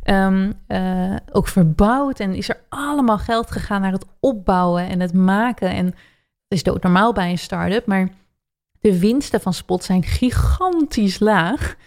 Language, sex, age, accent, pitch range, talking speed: Dutch, female, 20-39, Dutch, 185-220 Hz, 155 wpm